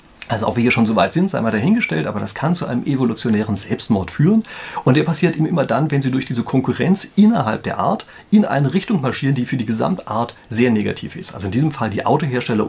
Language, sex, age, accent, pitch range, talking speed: German, male, 40-59, German, 110-155 Hz, 240 wpm